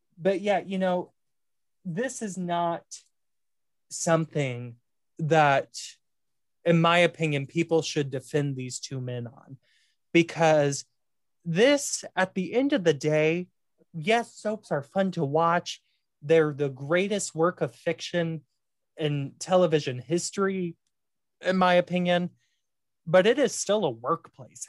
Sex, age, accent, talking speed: male, 20-39, American, 125 wpm